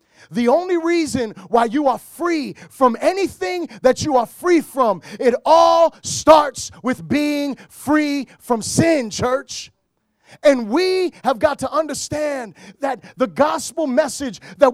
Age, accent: 30-49, American